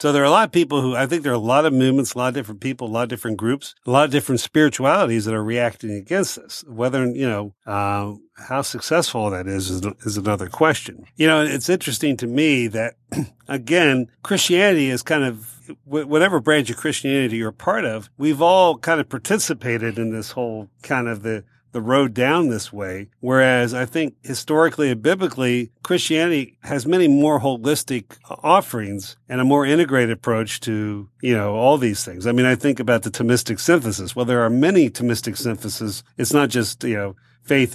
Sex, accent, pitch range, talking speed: male, American, 115-145 Hz, 200 wpm